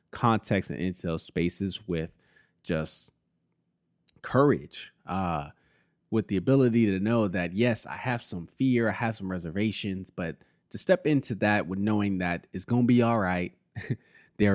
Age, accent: 30-49, American